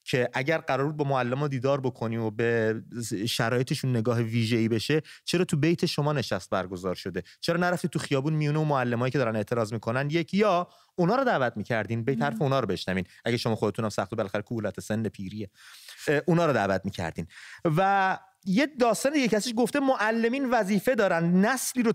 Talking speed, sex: 180 wpm, male